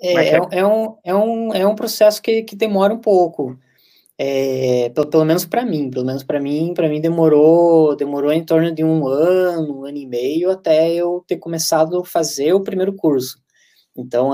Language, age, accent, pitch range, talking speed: Portuguese, 20-39, Brazilian, 135-180 Hz, 195 wpm